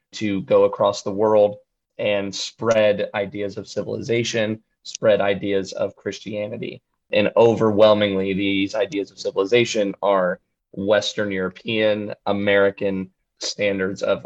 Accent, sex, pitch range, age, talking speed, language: American, male, 100-110 Hz, 20-39, 110 wpm, English